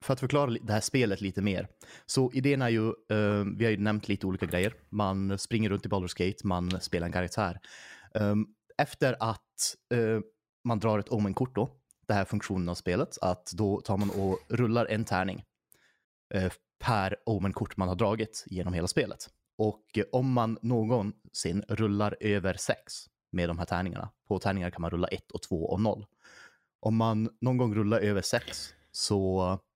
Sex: male